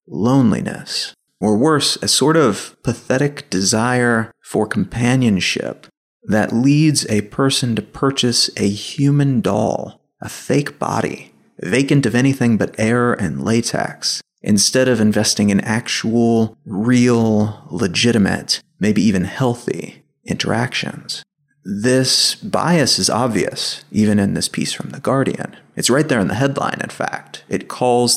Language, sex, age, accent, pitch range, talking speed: English, male, 30-49, American, 110-140 Hz, 130 wpm